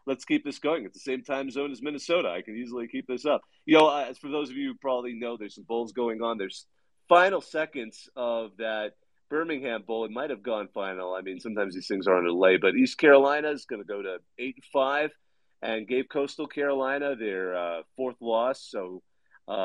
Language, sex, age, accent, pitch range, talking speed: English, male, 40-59, American, 110-150 Hz, 225 wpm